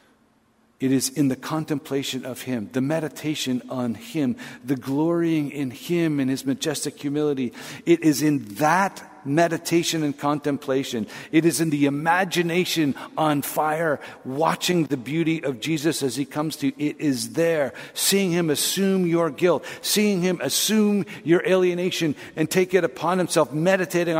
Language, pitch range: English, 115-165 Hz